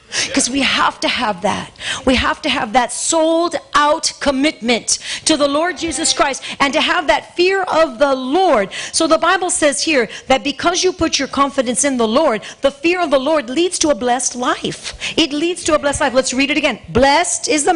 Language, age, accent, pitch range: English, 50-69, American, 260-330 Hz